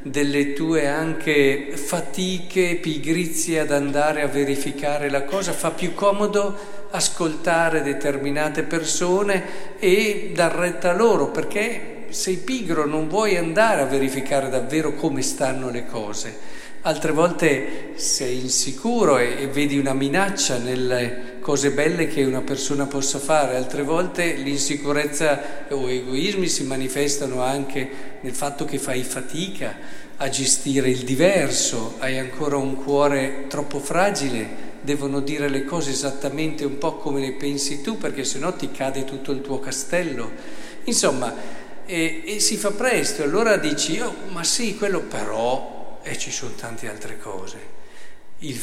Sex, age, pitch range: male, 50-69, 135-170 Hz